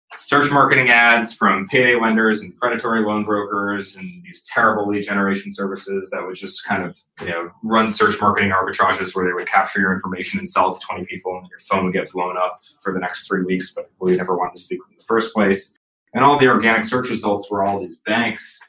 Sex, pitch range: male, 95-115 Hz